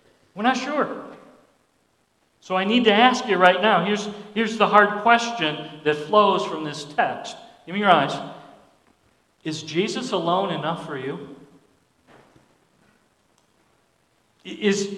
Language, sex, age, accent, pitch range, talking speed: English, male, 50-69, American, 195-250 Hz, 130 wpm